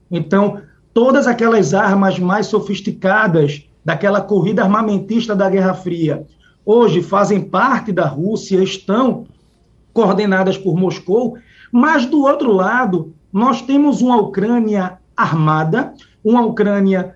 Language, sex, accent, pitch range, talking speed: Portuguese, male, Brazilian, 195-265 Hz, 110 wpm